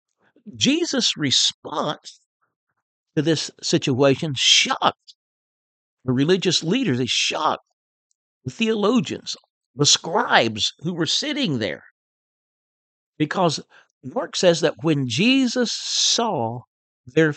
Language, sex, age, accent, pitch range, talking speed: English, male, 60-79, American, 140-200 Hz, 95 wpm